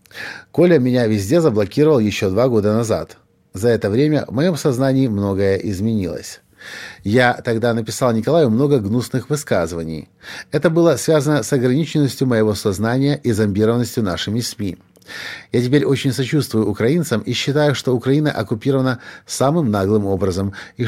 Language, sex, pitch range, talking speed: Russian, male, 100-145 Hz, 140 wpm